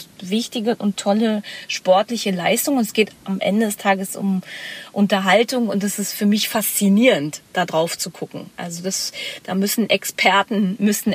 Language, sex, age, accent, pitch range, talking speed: German, female, 30-49, German, 185-215 Hz, 160 wpm